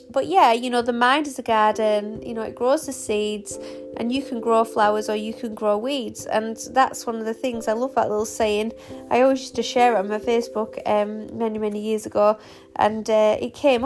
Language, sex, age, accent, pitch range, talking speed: English, female, 30-49, British, 215-255 Hz, 235 wpm